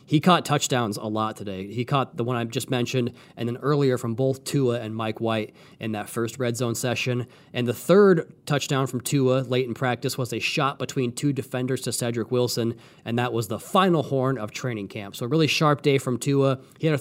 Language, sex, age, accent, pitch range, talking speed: English, male, 20-39, American, 120-145 Hz, 230 wpm